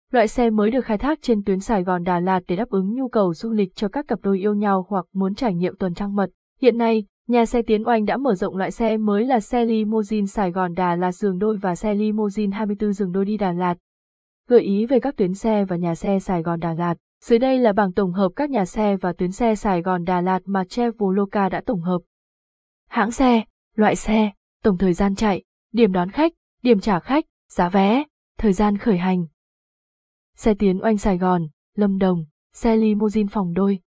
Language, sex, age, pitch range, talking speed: Vietnamese, female, 20-39, 190-230 Hz, 225 wpm